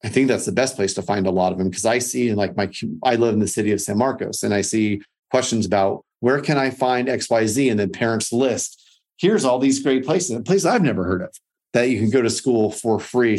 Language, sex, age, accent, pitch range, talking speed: English, male, 40-59, American, 105-130 Hz, 260 wpm